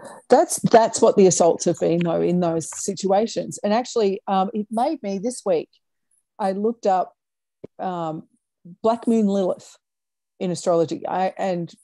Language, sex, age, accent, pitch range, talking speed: English, female, 40-59, Australian, 165-215 Hz, 150 wpm